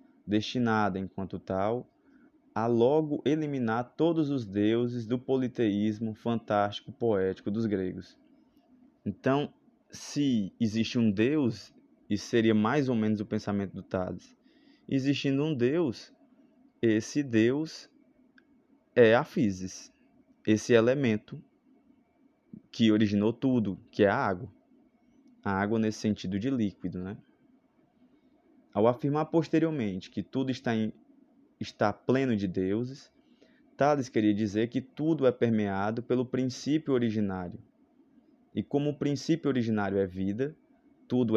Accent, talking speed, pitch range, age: Brazilian, 115 wpm, 105-155 Hz, 20-39